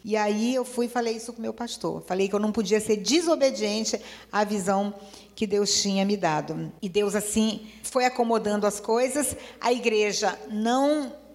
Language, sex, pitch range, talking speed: Portuguese, female, 215-265 Hz, 185 wpm